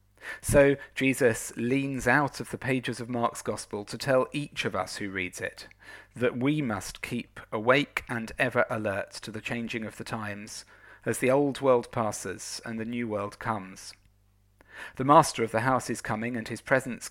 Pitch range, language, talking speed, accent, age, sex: 105-125 Hz, English, 180 wpm, British, 40-59, male